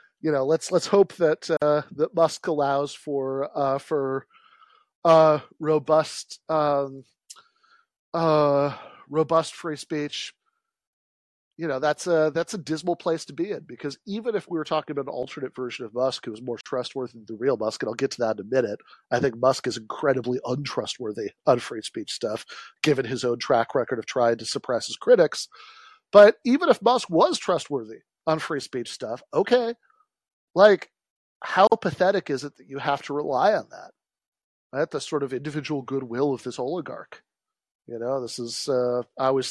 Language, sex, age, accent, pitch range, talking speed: English, male, 40-59, American, 125-165 Hz, 180 wpm